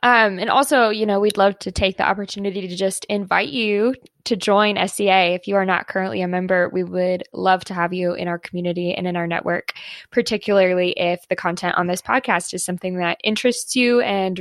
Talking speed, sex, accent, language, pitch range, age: 210 wpm, female, American, English, 180-210 Hz, 10-29